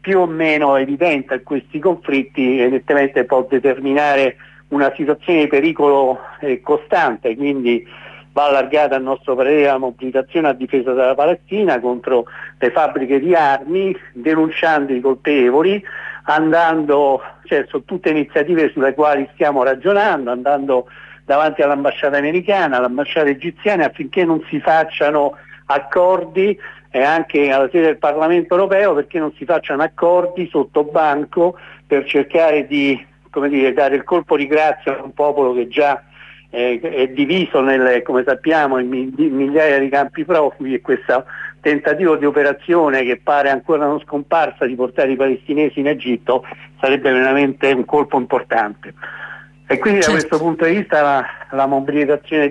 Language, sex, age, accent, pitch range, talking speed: Italian, male, 60-79, native, 135-160 Hz, 145 wpm